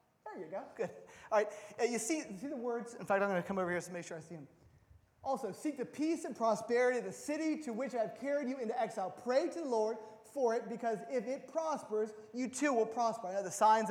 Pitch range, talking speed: 205-265 Hz, 265 wpm